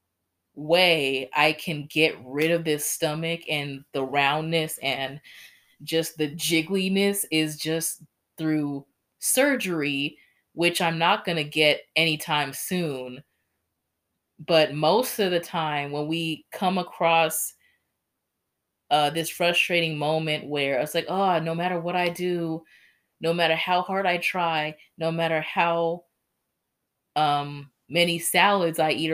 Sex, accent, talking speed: female, American, 130 wpm